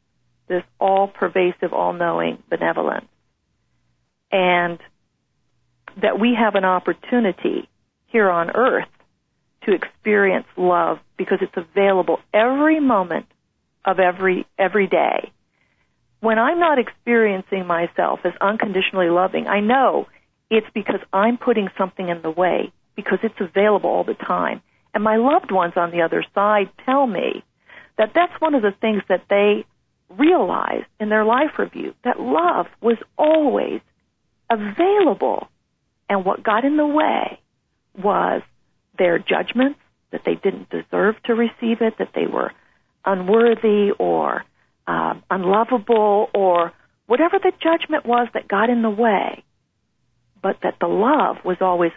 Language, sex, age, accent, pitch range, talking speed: English, female, 50-69, American, 185-240 Hz, 135 wpm